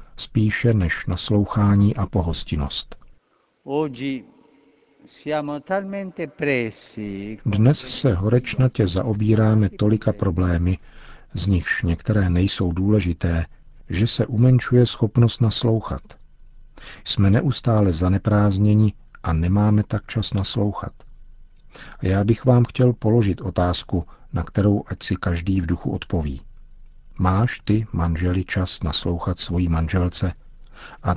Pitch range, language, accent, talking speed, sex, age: 90-110 Hz, Czech, native, 100 wpm, male, 50-69